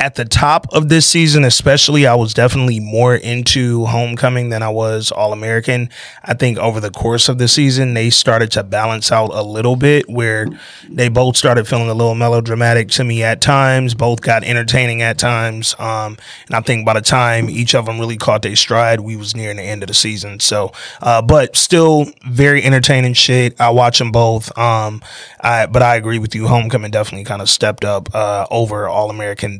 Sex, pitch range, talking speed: male, 110-130 Hz, 200 wpm